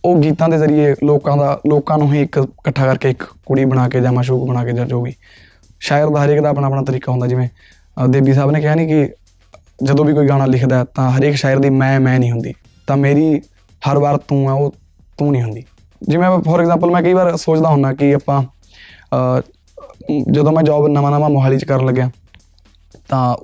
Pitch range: 125-155 Hz